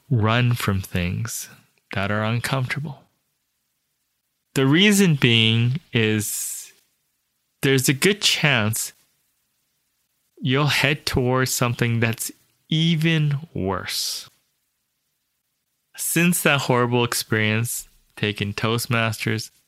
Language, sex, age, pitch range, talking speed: English, male, 20-39, 110-140 Hz, 80 wpm